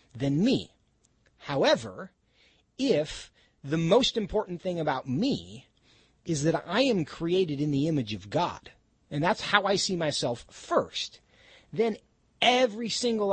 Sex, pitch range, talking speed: male, 140-200 Hz, 135 wpm